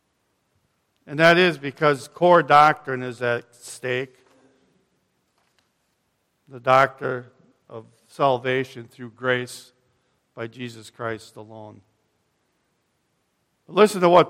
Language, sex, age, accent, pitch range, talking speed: English, male, 50-69, American, 125-155 Hz, 90 wpm